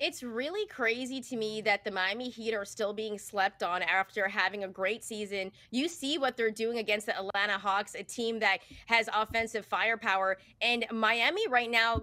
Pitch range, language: 205-250 Hz, English